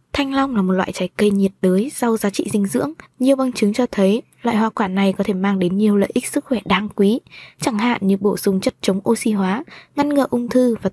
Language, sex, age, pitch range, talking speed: Vietnamese, female, 20-39, 195-240 Hz, 265 wpm